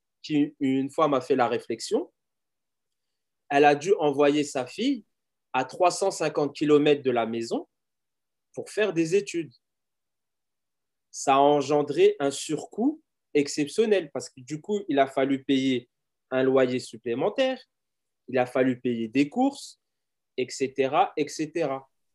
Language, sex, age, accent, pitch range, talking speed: French, male, 30-49, French, 130-155 Hz, 130 wpm